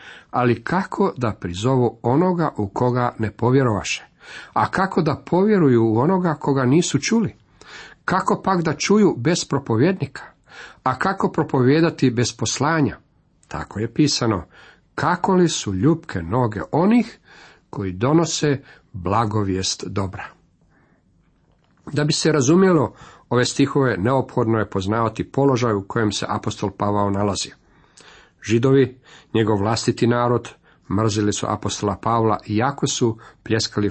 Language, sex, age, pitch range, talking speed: Croatian, male, 50-69, 110-145 Hz, 125 wpm